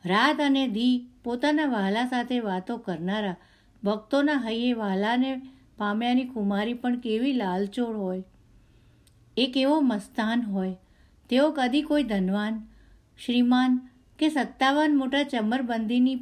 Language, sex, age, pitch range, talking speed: Gujarati, female, 50-69, 190-260 Hz, 110 wpm